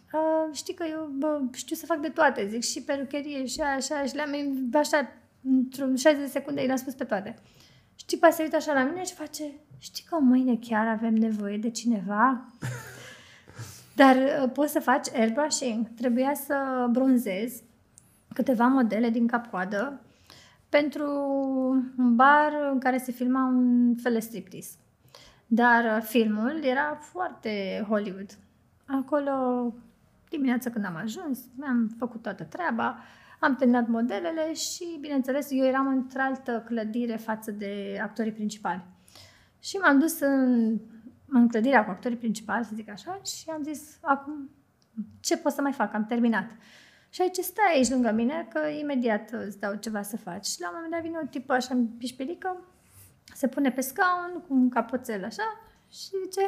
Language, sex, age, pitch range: Romanian, female, 20-39, 230-295 Hz